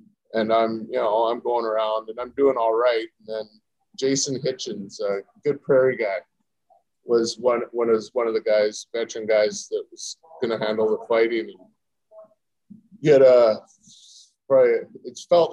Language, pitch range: English, 110-150 Hz